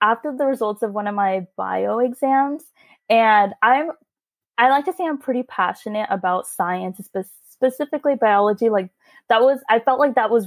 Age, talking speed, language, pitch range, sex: 20-39, 180 wpm, English, 190-245 Hz, female